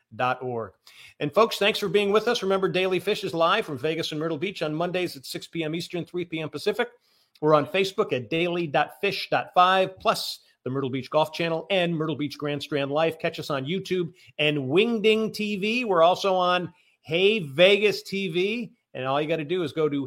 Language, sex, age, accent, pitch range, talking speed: English, male, 50-69, American, 140-175 Hz, 200 wpm